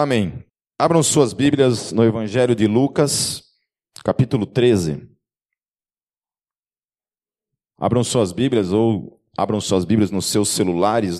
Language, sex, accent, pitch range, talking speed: Portuguese, male, Brazilian, 90-120 Hz, 105 wpm